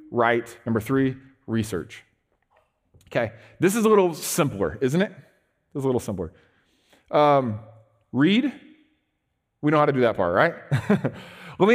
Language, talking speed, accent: English, 150 wpm, American